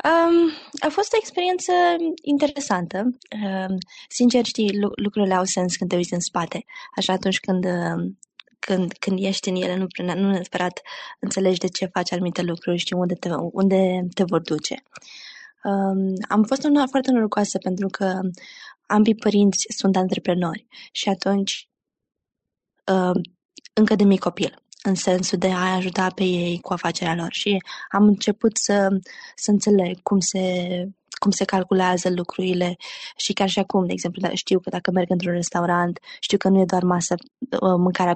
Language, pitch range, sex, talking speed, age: Romanian, 180-205 Hz, female, 160 wpm, 20-39